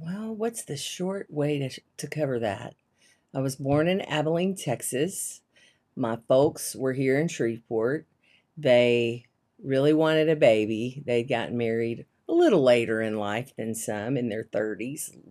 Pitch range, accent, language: 130-160 Hz, American, English